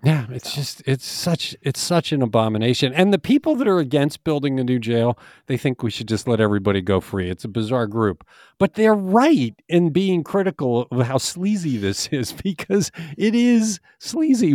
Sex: male